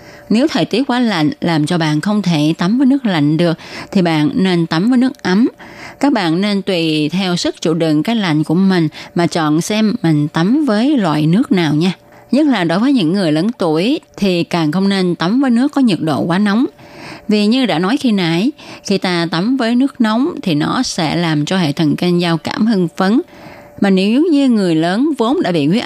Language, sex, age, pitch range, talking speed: Vietnamese, female, 20-39, 165-245 Hz, 225 wpm